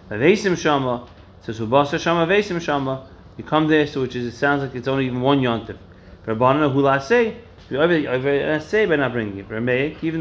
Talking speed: 165 wpm